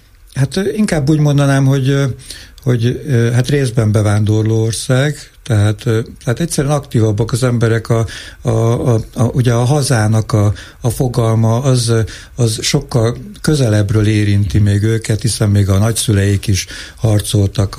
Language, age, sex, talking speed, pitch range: Hungarian, 60-79, male, 135 wpm, 100-120 Hz